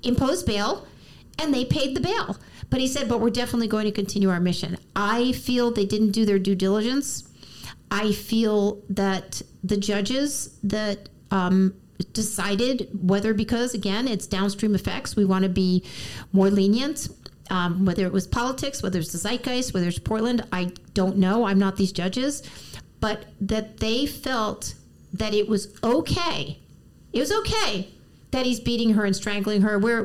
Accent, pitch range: American, 195-240 Hz